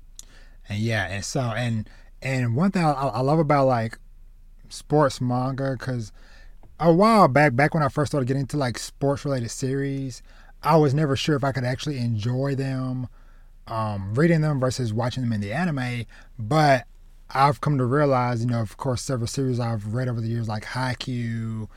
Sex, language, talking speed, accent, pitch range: male, English, 185 wpm, American, 110-135 Hz